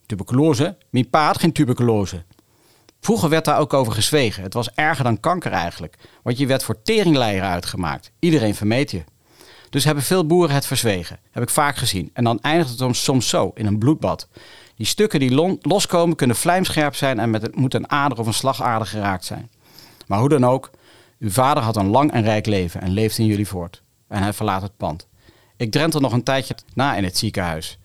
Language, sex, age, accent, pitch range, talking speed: Dutch, male, 40-59, Dutch, 100-135 Hz, 205 wpm